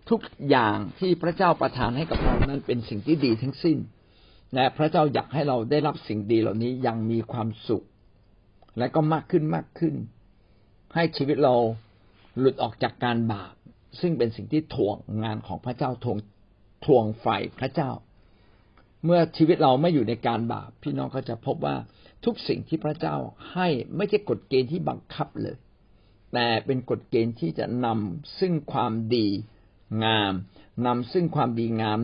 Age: 60-79